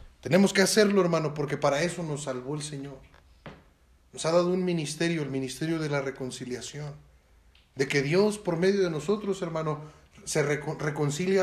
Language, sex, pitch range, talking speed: Spanish, male, 135-190 Hz, 165 wpm